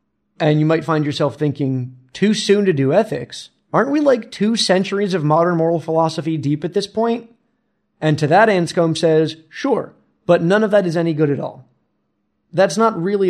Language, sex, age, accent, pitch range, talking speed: English, male, 30-49, American, 150-180 Hz, 190 wpm